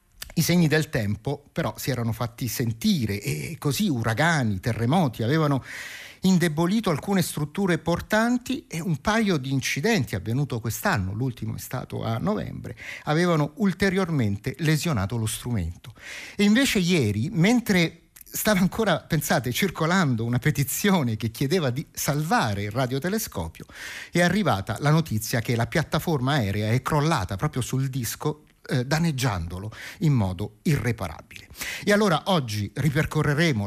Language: Italian